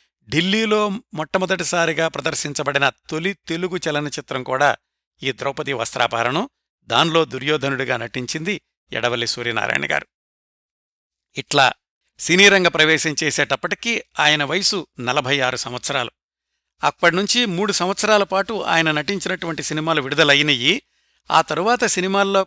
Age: 60-79